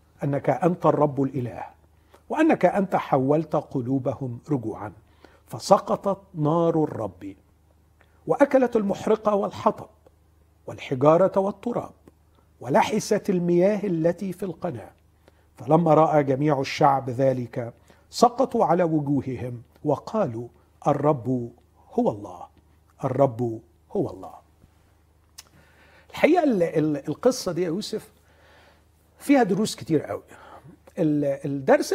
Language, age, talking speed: Arabic, 50-69, 85 wpm